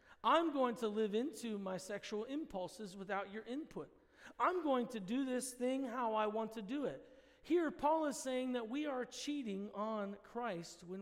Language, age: English, 40-59